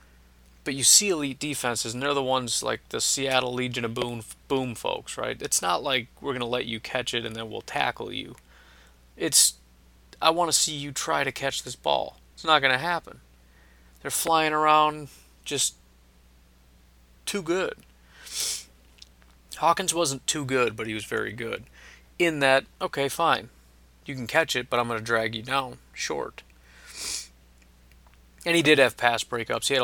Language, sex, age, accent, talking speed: English, male, 30-49, American, 175 wpm